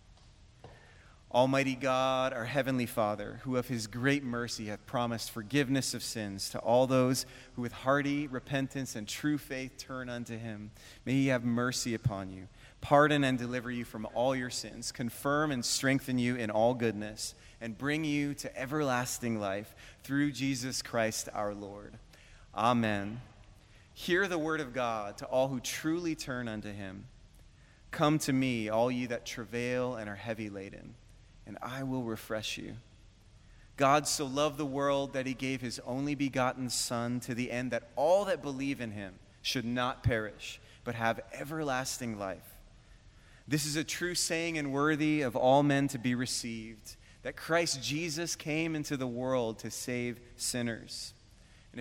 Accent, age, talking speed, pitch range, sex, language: American, 30-49, 165 wpm, 110-135 Hz, male, English